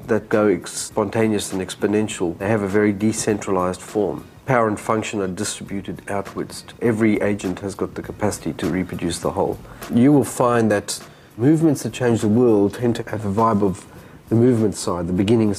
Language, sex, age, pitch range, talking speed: English, male, 40-59, 95-115 Hz, 180 wpm